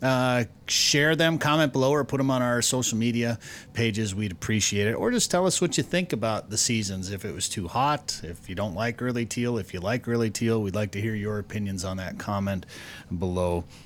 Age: 30-49